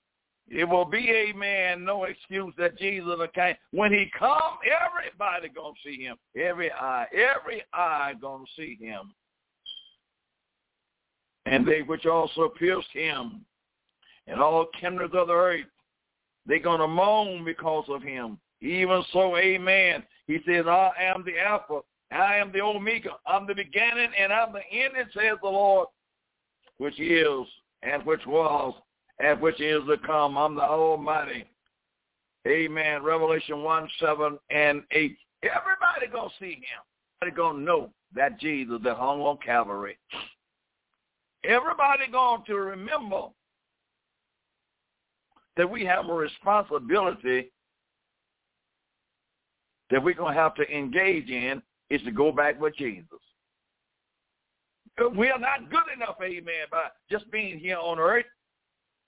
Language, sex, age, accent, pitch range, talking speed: English, male, 60-79, American, 150-205 Hz, 140 wpm